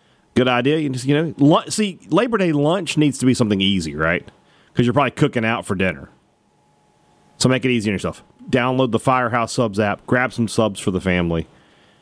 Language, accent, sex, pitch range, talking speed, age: English, American, male, 100-150 Hz, 200 wpm, 40-59